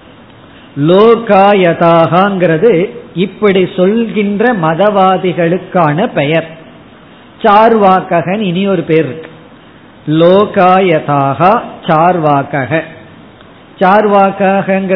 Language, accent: Tamil, native